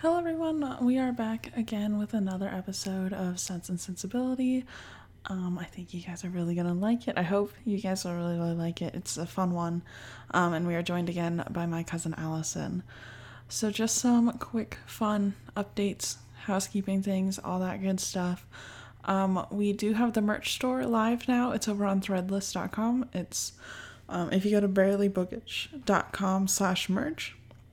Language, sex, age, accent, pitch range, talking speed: English, female, 10-29, American, 175-215 Hz, 170 wpm